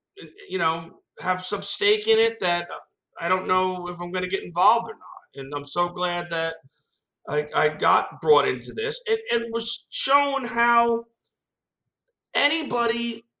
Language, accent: English, American